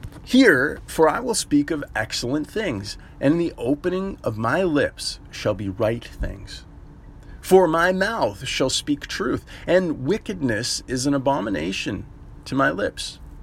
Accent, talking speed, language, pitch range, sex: American, 145 wpm, English, 105-145 Hz, male